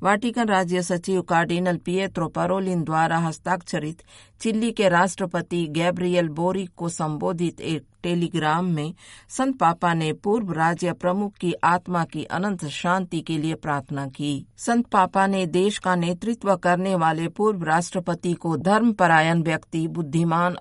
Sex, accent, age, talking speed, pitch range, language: female, native, 50-69, 140 wpm, 160-190 Hz, Hindi